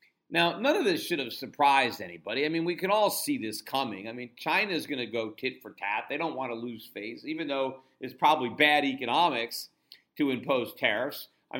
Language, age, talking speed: English, 50-69, 215 wpm